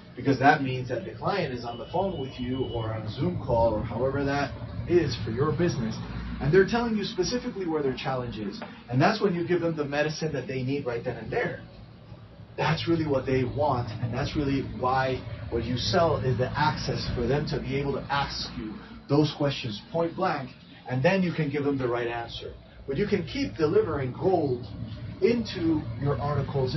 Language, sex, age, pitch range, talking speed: English, male, 30-49, 120-150 Hz, 210 wpm